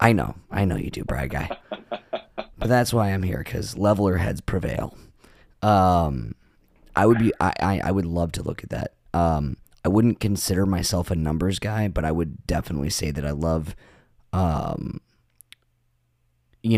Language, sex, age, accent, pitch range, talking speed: English, male, 30-49, American, 75-95 Hz, 155 wpm